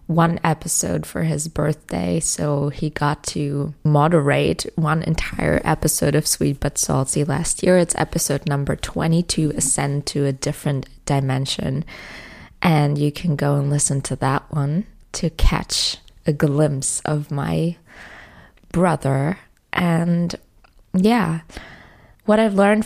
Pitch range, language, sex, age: 145-175 Hz, English, female, 20-39